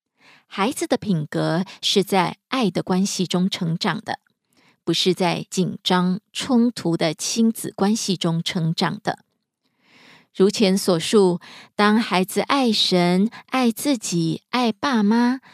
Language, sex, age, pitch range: Korean, female, 20-39, 180-225 Hz